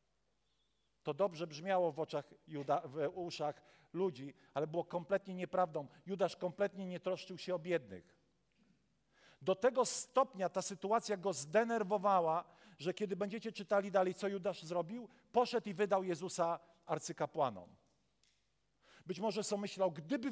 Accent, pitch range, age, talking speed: native, 150-195 Hz, 50-69, 130 wpm